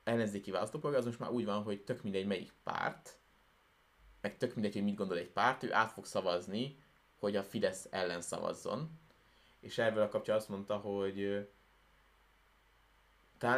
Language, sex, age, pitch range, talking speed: Hungarian, male, 20-39, 100-120 Hz, 160 wpm